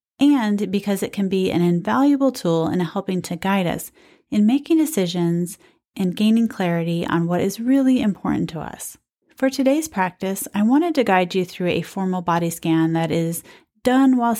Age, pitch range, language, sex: 30-49, 180-255 Hz, English, female